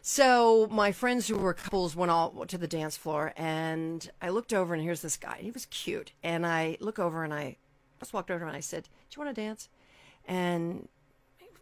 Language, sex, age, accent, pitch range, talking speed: English, female, 50-69, American, 155-195 Hz, 215 wpm